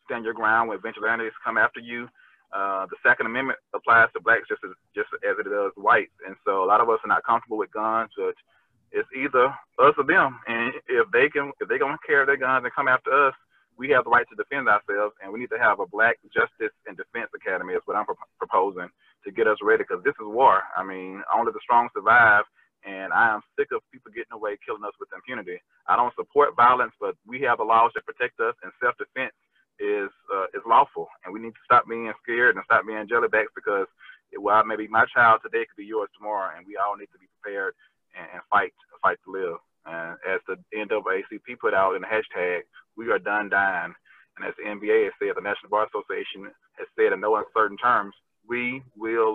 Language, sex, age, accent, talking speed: English, male, 30-49, American, 225 wpm